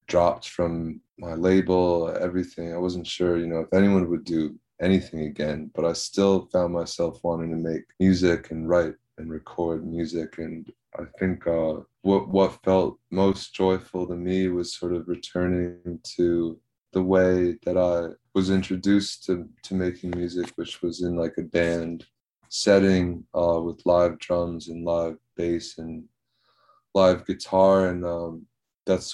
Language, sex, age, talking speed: English, male, 20-39, 155 wpm